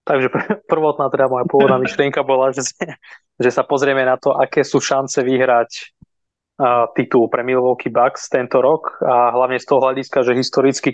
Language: Slovak